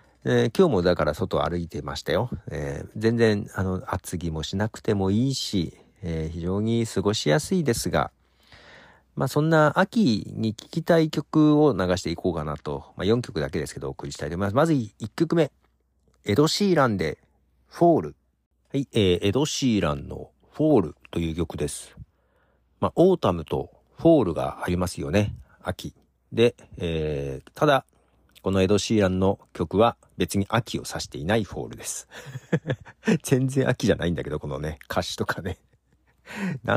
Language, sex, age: Japanese, male, 50-69